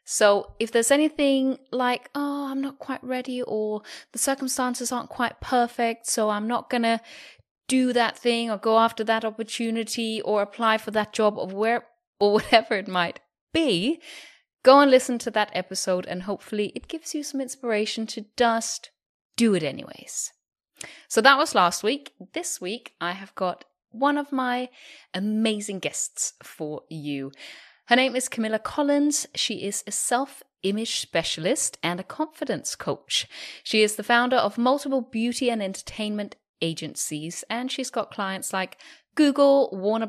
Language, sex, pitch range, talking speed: English, female, 205-260 Hz, 160 wpm